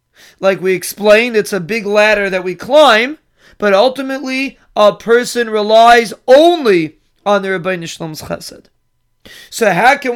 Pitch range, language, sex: 200-240 Hz, English, male